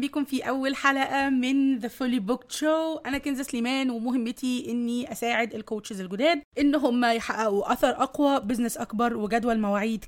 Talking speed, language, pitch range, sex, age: 155 wpm, Arabic, 225-270 Hz, female, 20-39